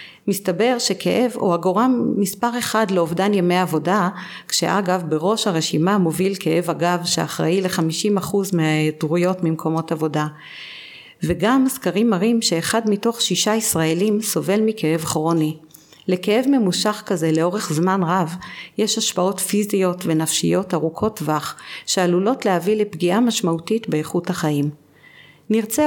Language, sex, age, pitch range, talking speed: Hebrew, female, 50-69, 165-215 Hz, 115 wpm